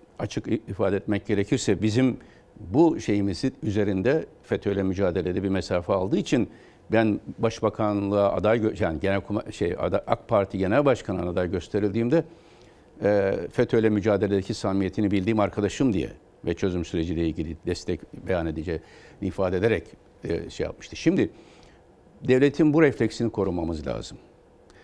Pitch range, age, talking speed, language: 100-125 Hz, 60-79, 120 wpm, Turkish